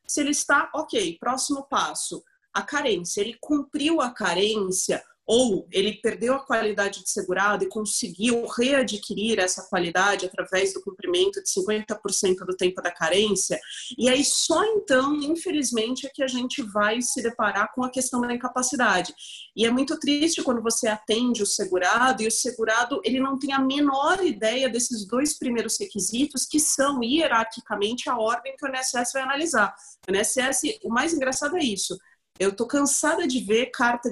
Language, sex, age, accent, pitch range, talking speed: Portuguese, female, 30-49, Brazilian, 195-265 Hz, 165 wpm